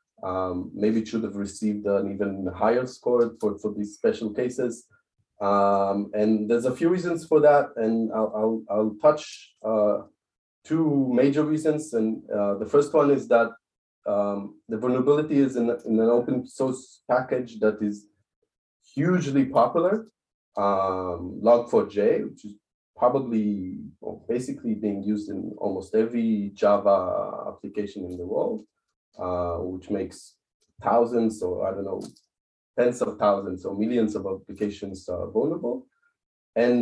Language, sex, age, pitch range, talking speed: English, male, 30-49, 100-130 Hz, 140 wpm